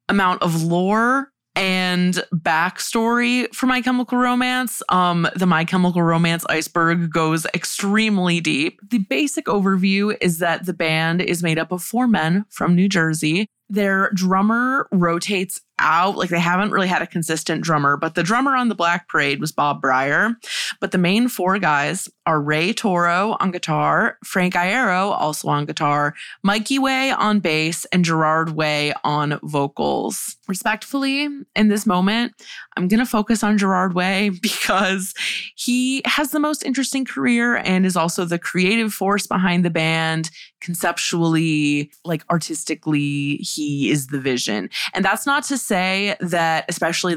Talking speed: 155 wpm